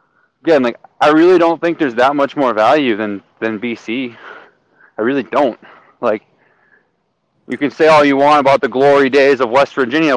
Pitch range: 110-145 Hz